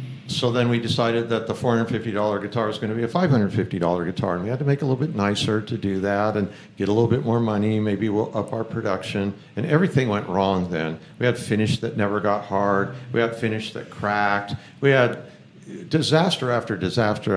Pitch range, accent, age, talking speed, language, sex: 95-120 Hz, American, 60-79, 215 wpm, English, male